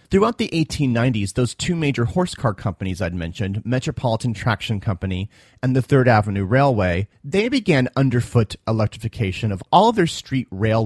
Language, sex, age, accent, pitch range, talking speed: English, male, 30-49, American, 105-150 Hz, 160 wpm